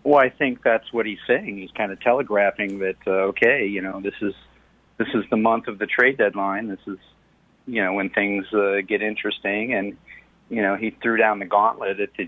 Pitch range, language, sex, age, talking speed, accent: 100-120 Hz, English, male, 40-59, 220 wpm, American